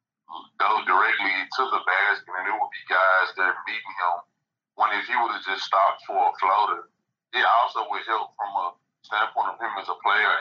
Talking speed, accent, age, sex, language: 200 wpm, American, 30-49, male, English